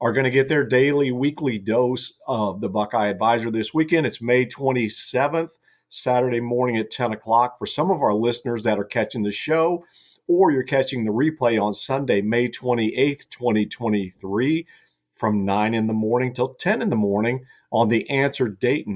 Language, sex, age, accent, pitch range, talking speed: English, male, 50-69, American, 110-130 Hz, 175 wpm